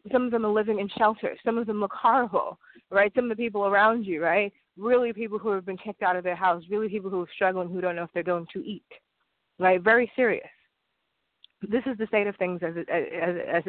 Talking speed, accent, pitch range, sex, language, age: 245 wpm, American, 180-210 Hz, female, English, 30-49